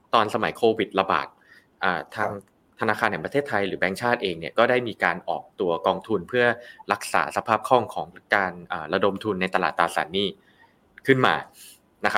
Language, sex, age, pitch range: Thai, male, 20-39, 100-135 Hz